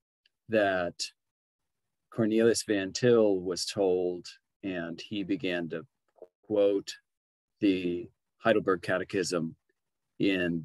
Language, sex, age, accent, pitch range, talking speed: English, male, 40-59, American, 90-120 Hz, 85 wpm